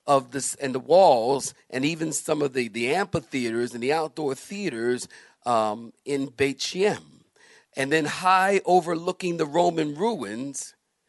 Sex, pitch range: male, 120-170 Hz